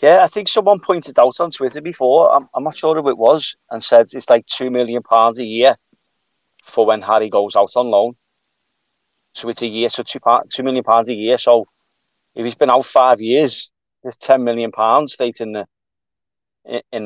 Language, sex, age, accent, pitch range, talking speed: English, male, 30-49, British, 110-130 Hz, 210 wpm